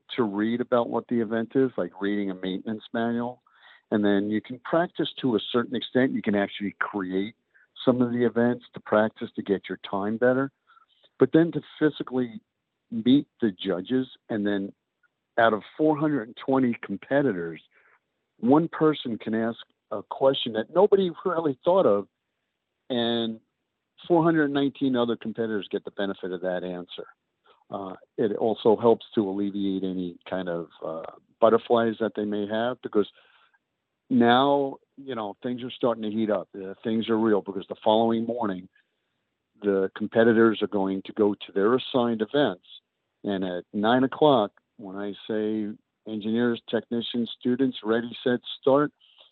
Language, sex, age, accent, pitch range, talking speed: English, male, 50-69, American, 105-130 Hz, 155 wpm